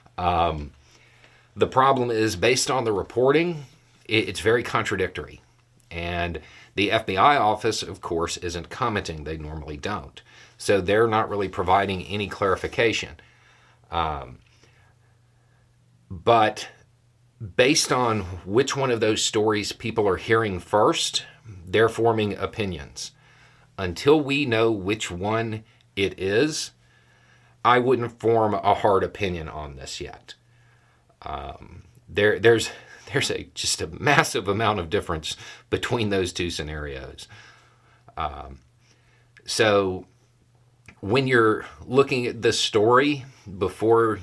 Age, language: 40-59, English